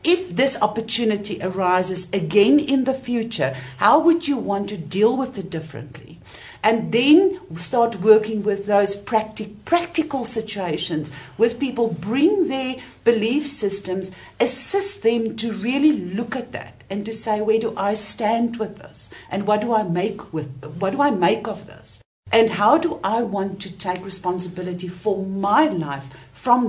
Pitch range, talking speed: 195-265 Hz, 160 wpm